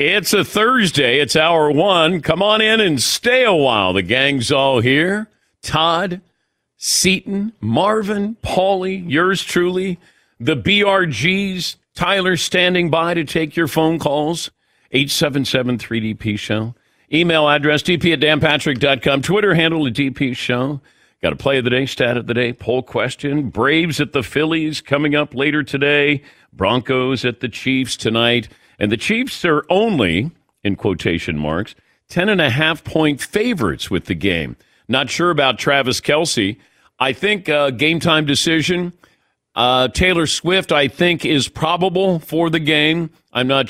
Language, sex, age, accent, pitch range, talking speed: English, male, 50-69, American, 125-175 Hz, 145 wpm